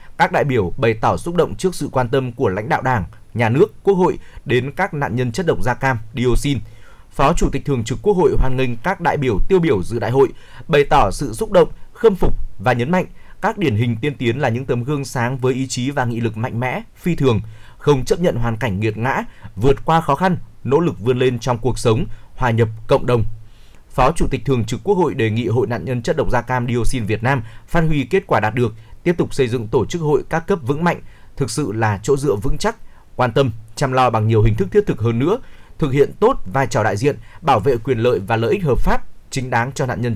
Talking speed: 260 wpm